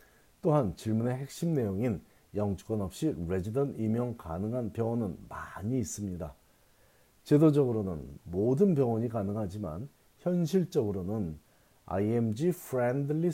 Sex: male